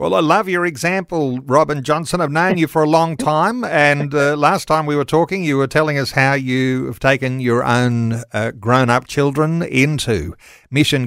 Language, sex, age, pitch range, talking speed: English, male, 50-69, 130-160 Hz, 190 wpm